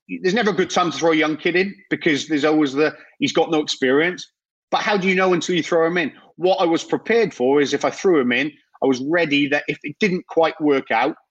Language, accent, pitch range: English, British, 130-170 Hz